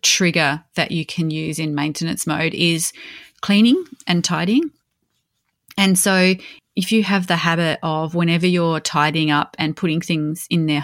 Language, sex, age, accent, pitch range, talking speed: English, female, 30-49, Australian, 150-180 Hz, 160 wpm